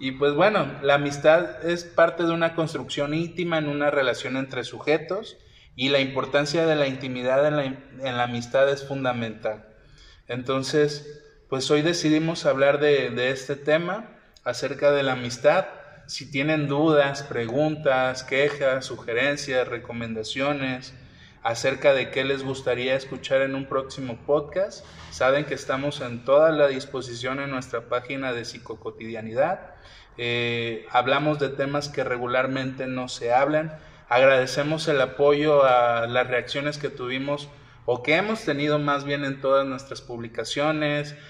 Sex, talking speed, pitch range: male, 140 wpm, 130-150 Hz